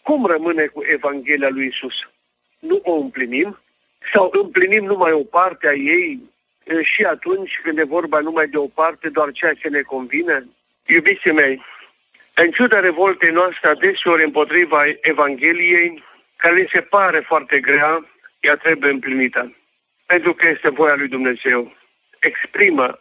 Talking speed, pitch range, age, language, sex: 145 wpm, 145-195 Hz, 50-69, Romanian, male